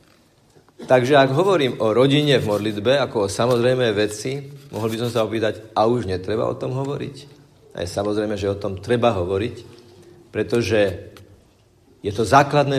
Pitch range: 105-135 Hz